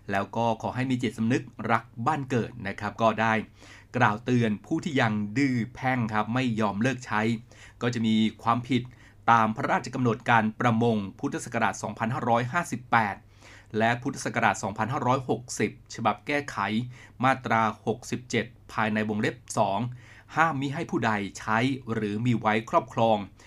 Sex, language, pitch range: male, Thai, 110-125 Hz